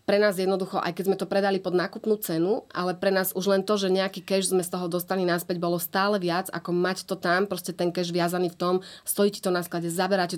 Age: 30-49